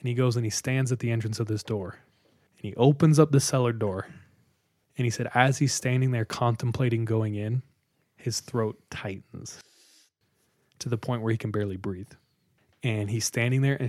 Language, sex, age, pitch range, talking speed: English, male, 20-39, 110-135 Hz, 195 wpm